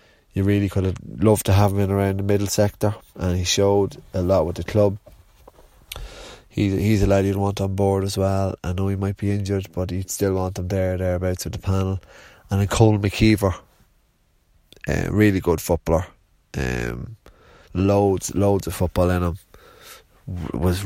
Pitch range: 90-100 Hz